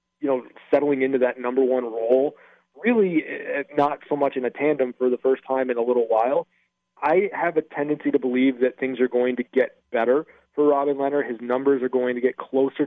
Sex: male